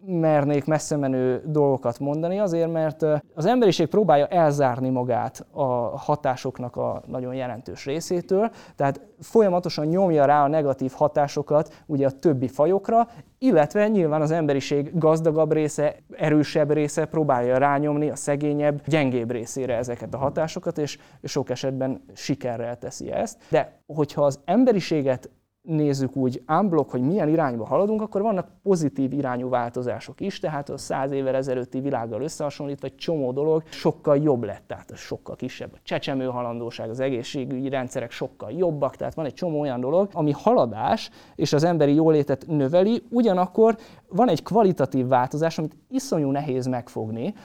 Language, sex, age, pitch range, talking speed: Hungarian, male, 20-39, 130-165 Hz, 145 wpm